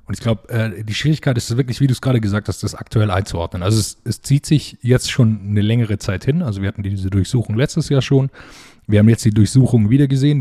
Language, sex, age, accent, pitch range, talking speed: German, male, 20-39, German, 105-125 Hz, 240 wpm